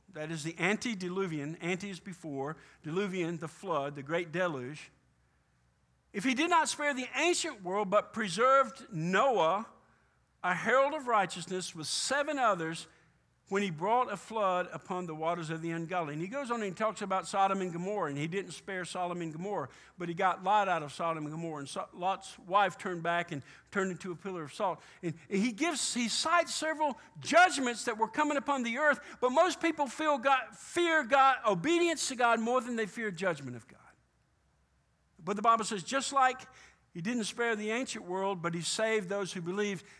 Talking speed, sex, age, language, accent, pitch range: 195 wpm, male, 50-69, English, American, 165-235 Hz